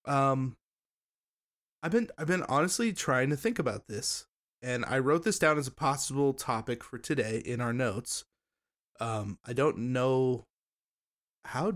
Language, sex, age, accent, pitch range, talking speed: English, male, 20-39, American, 115-145 Hz, 155 wpm